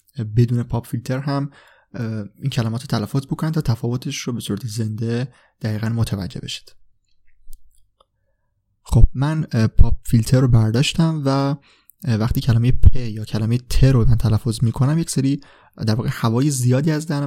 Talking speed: 145 wpm